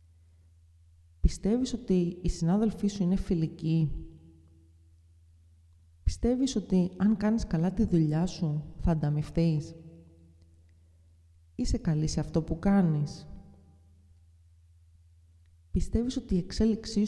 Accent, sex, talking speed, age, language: native, female, 95 wpm, 30-49, Greek